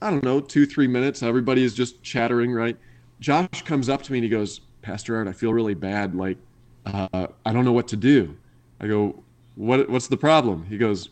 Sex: male